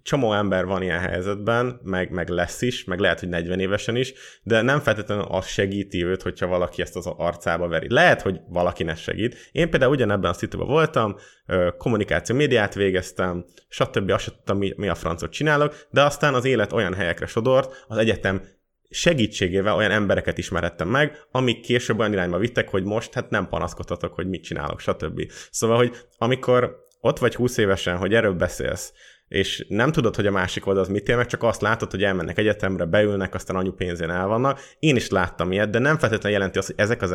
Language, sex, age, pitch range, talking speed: Hungarian, male, 20-39, 95-115 Hz, 190 wpm